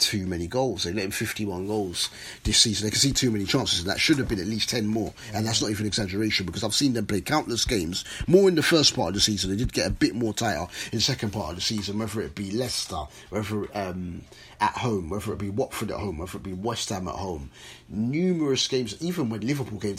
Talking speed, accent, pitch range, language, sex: 260 wpm, British, 100-125 Hz, English, male